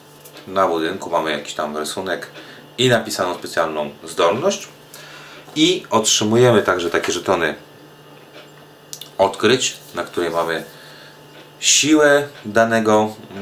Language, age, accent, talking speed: Polish, 30-49, native, 95 wpm